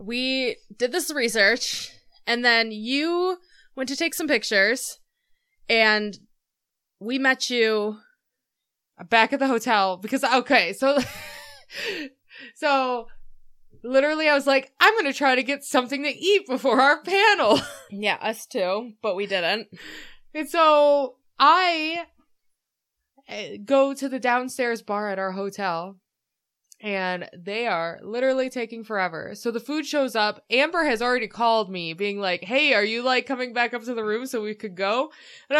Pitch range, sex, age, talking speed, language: 215-275 Hz, female, 20-39, 150 wpm, English